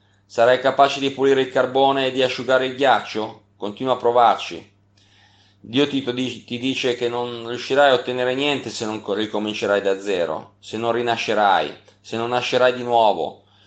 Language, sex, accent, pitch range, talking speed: Italian, male, native, 100-130 Hz, 165 wpm